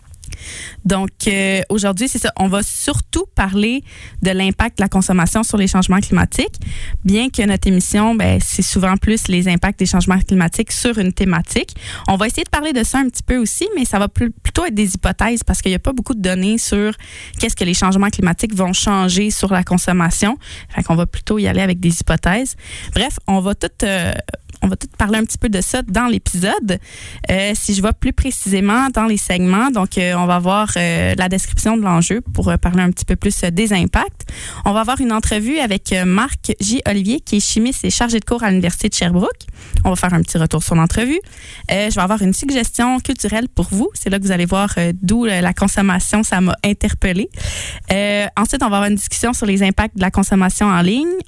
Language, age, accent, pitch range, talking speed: French, 20-39, Canadian, 185-220 Hz, 225 wpm